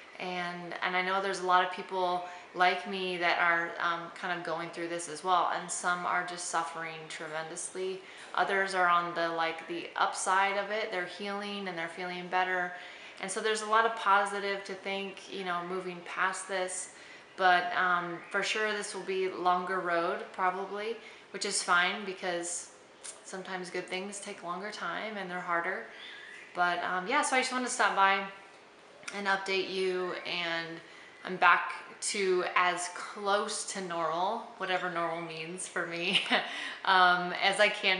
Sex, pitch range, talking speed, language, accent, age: female, 170-195 Hz, 170 wpm, English, American, 20-39